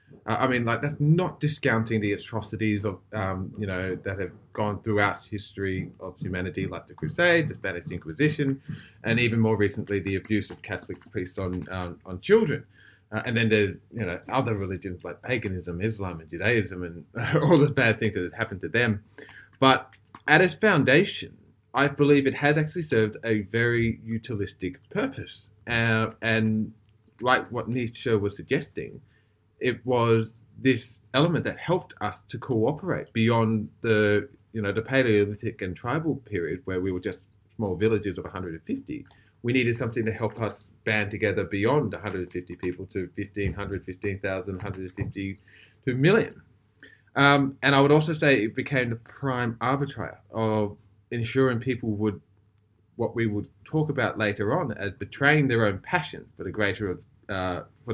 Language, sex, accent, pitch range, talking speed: English, male, Australian, 100-125 Hz, 165 wpm